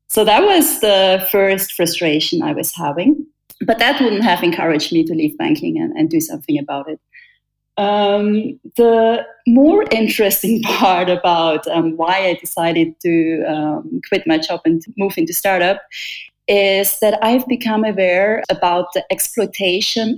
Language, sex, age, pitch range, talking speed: English, female, 30-49, 175-230 Hz, 150 wpm